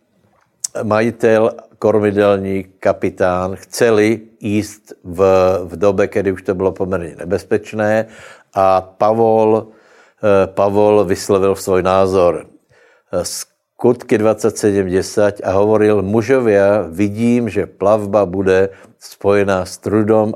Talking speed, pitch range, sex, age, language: 100 wpm, 95-110 Hz, male, 60-79, Slovak